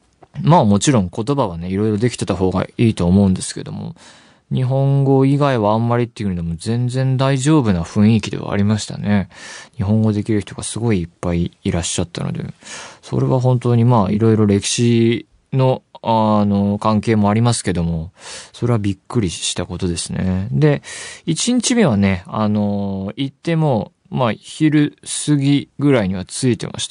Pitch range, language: 100-135 Hz, Japanese